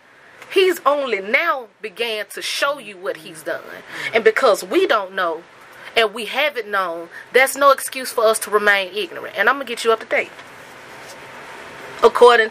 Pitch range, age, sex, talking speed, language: 210-285 Hz, 30-49, female, 175 wpm, English